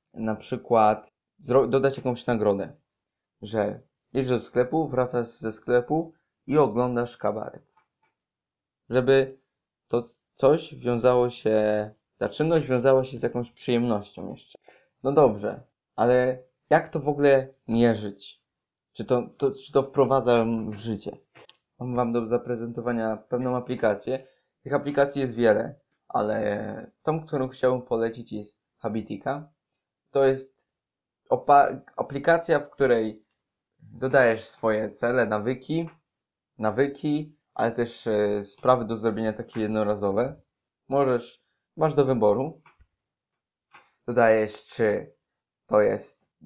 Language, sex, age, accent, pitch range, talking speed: Polish, male, 20-39, native, 110-135 Hz, 110 wpm